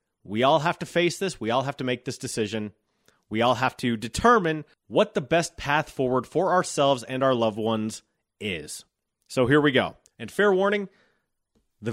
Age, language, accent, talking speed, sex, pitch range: 30-49, English, American, 190 wpm, male, 110-150 Hz